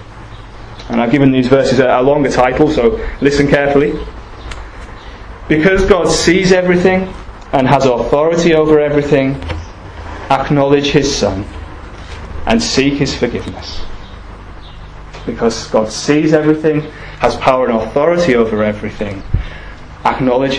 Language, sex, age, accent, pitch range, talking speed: English, male, 20-39, British, 100-140 Hz, 110 wpm